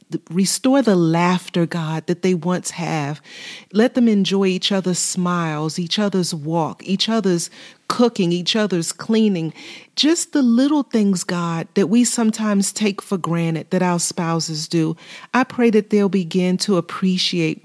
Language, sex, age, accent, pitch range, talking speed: English, female, 30-49, American, 175-220 Hz, 155 wpm